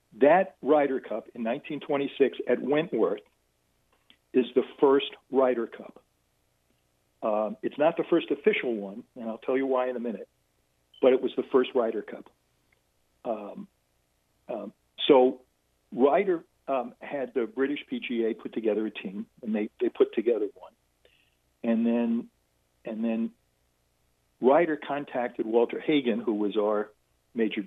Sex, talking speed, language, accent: male, 140 wpm, English, American